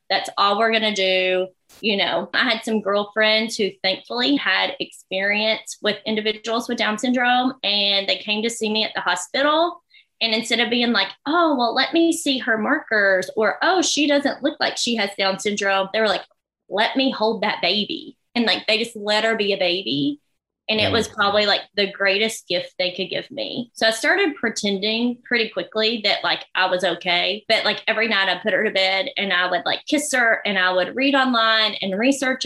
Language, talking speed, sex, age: English, 210 wpm, female, 20-39